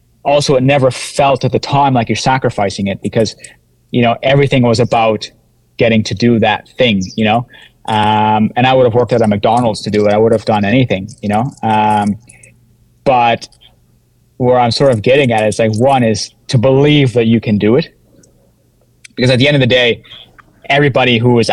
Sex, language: male, English